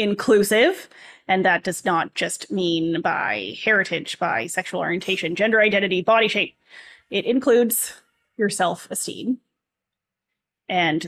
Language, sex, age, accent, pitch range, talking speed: English, female, 30-49, American, 180-250 Hz, 115 wpm